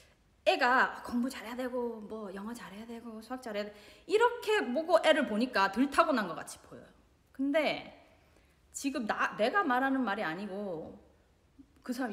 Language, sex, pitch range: Korean, female, 210-300 Hz